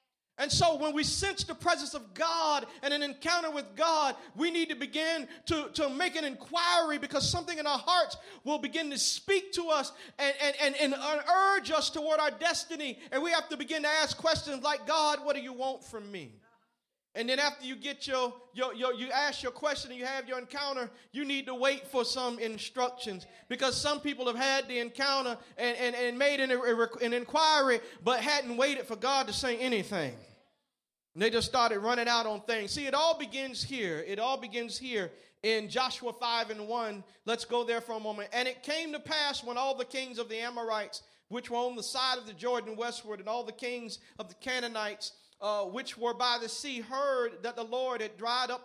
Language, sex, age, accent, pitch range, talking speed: English, male, 40-59, American, 235-285 Hz, 215 wpm